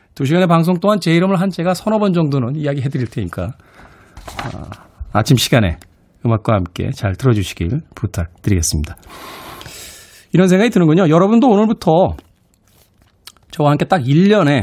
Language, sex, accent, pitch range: Korean, male, native, 100-165 Hz